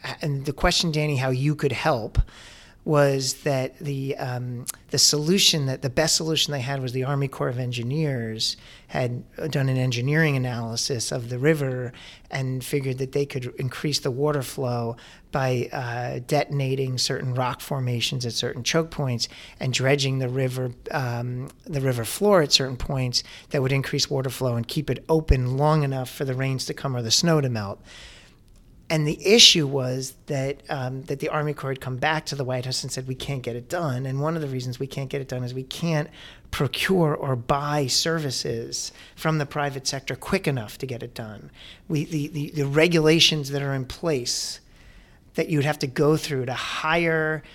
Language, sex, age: English, male, 40-59